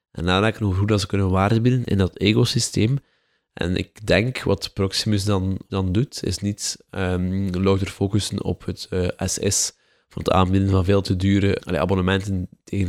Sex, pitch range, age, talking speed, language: male, 95-105 Hz, 20-39, 175 wpm, Dutch